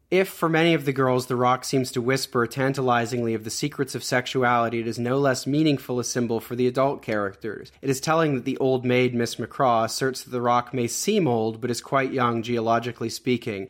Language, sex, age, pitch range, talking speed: English, male, 30-49, 115-130 Hz, 220 wpm